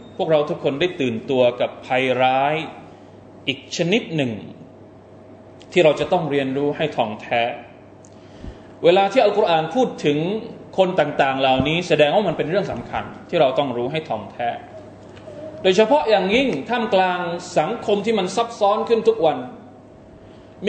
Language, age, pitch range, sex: Thai, 20-39, 125-200 Hz, male